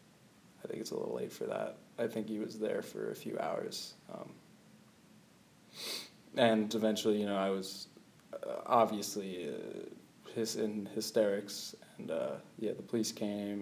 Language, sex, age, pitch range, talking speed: English, male, 20-39, 105-115 Hz, 155 wpm